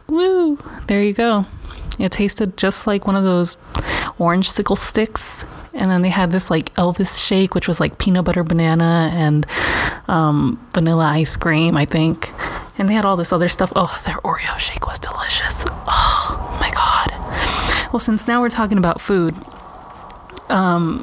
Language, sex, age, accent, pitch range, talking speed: English, female, 20-39, American, 175-205 Hz, 170 wpm